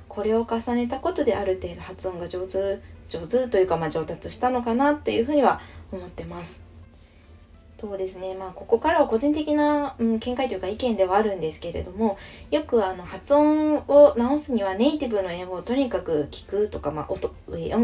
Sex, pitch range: female, 160-270 Hz